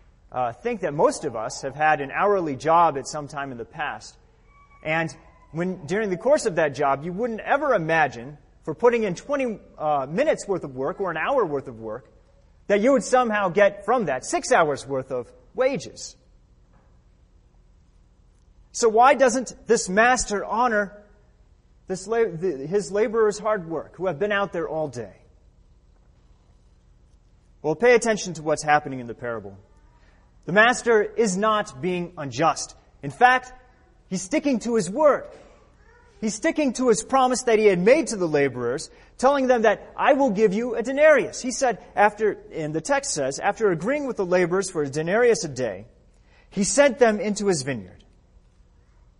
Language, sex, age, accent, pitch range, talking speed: English, male, 30-49, American, 140-230 Hz, 170 wpm